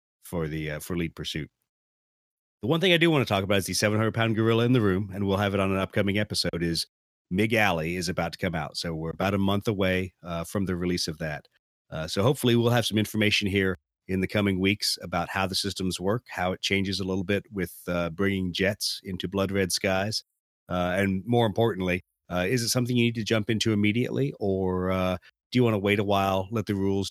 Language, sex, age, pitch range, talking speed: English, male, 40-59, 85-105 Hz, 240 wpm